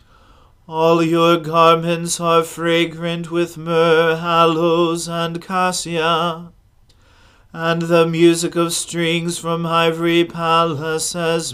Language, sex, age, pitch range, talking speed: English, male, 40-59, 120-170 Hz, 95 wpm